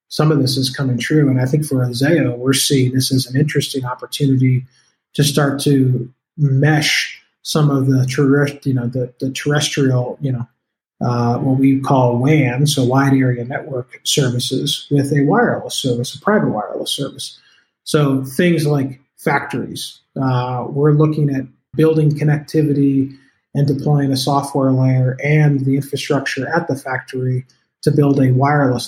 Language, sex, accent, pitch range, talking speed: English, male, American, 125-145 Hz, 160 wpm